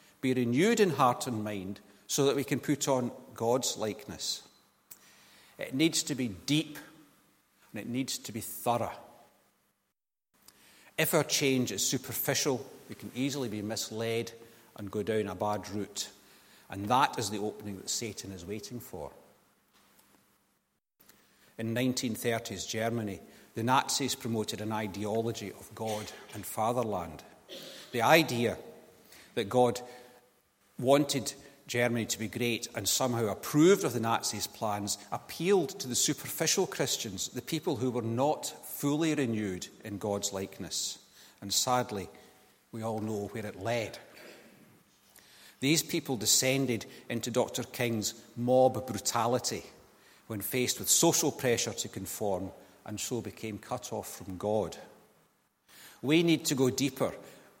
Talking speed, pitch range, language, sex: 135 wpm, 105-130 Hz, English, male